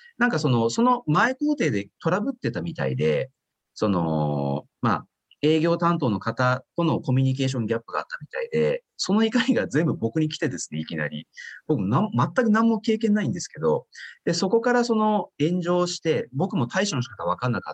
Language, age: Japanese, 40-59